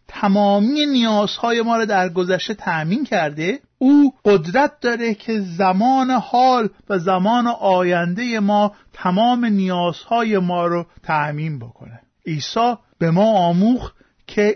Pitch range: 175-235 Hz